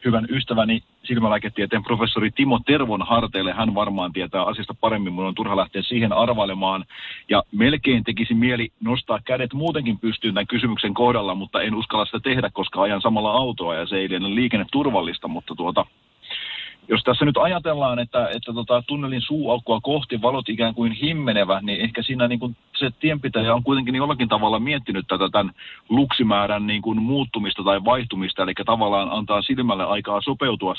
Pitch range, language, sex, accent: 105-125 Hz, Finnish, male, native